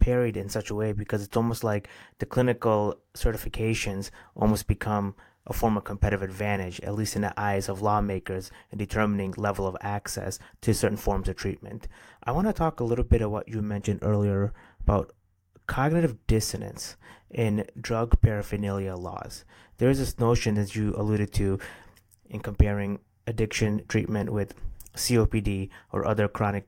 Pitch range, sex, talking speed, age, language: 100-110 Hz, male, 160 wpm, 30-49, English